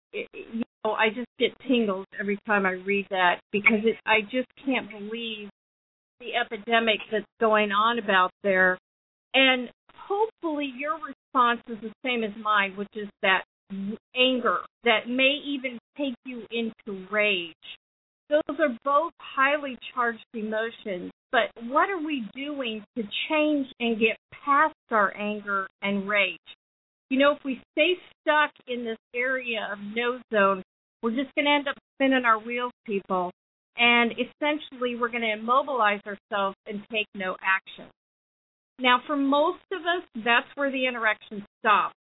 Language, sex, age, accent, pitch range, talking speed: English, female, 50-69, American, 205-265 Hz, 150 wpm